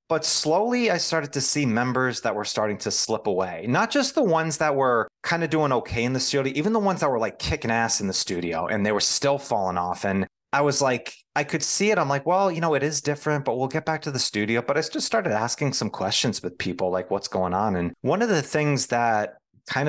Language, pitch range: English, 105-150 Hz